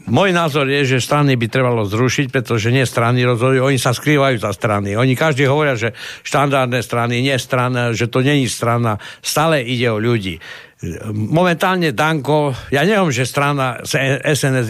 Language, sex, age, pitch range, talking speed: Slovak, male, 60-79, 120-155 Hz, 165 wpm